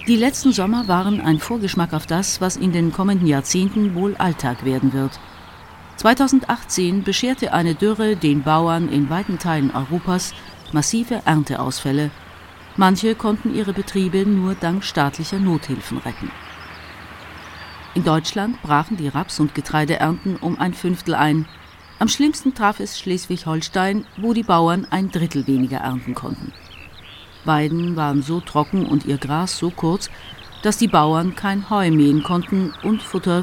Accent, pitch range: German, 145-200 Hz